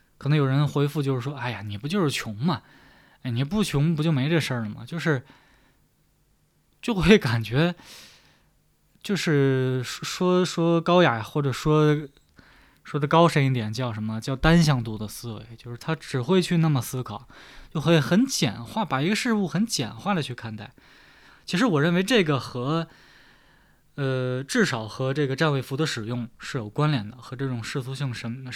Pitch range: 125-160 Hz